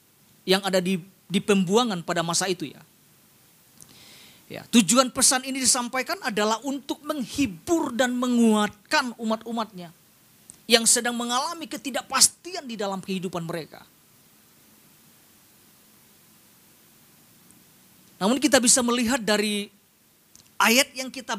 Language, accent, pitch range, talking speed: Indonesian, native, 210-290 Hz, 100 wpm